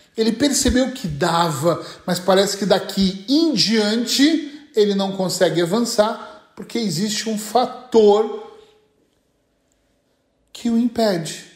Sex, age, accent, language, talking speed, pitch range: male, 40-59, Brazilian, Portuguese, 110 wpm, 170-230 Hz